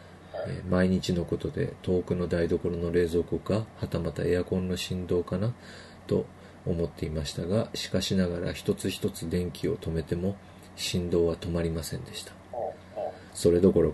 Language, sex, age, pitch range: Japanese, male, 40-59, 85-95 Hz